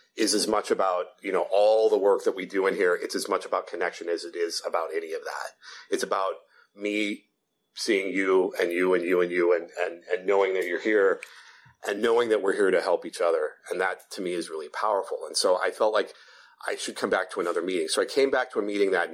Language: English